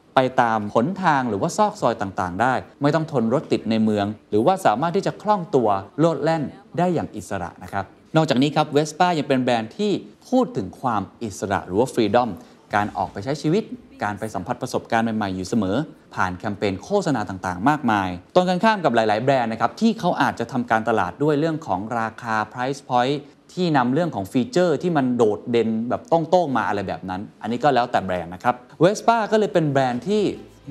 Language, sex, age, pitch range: Thai, male, 20-39, 105-155 Hz